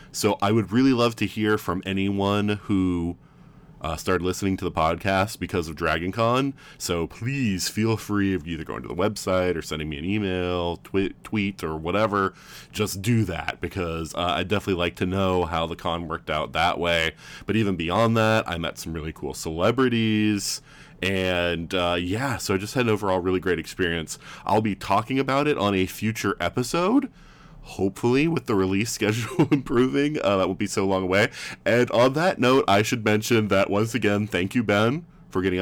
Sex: male